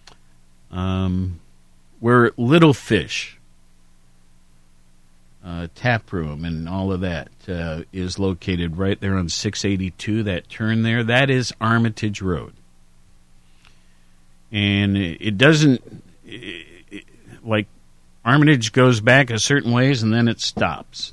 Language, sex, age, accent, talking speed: English, male, 50-69, American, 115 wpm